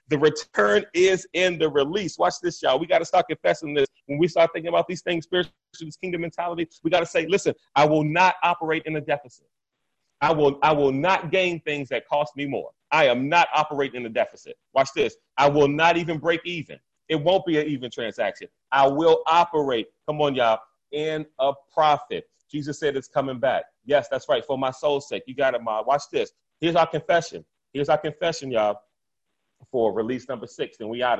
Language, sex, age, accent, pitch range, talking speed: English, male, 30-49, American, 140-180 Hz, 210 wpm